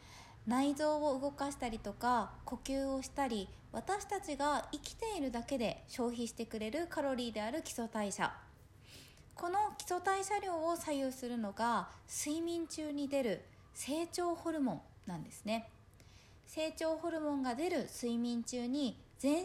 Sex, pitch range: female, 230-320 Hz